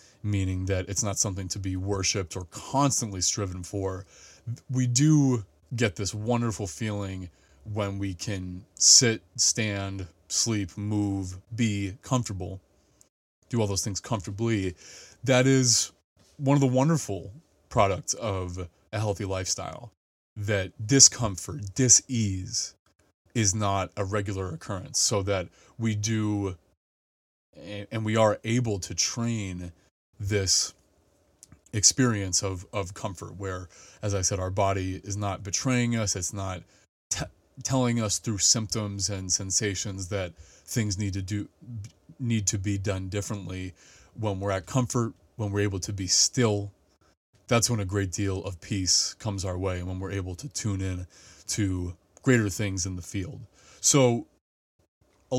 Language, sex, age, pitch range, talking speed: English, male, 20-39, 95-110 Hz, 140 wpm